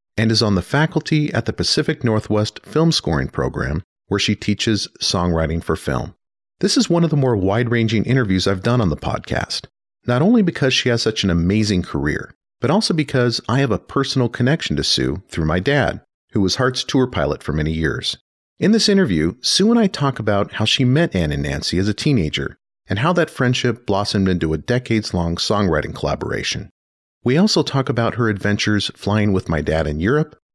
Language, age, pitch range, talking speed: English, 40-59, 95-145 Hz, 195 wpm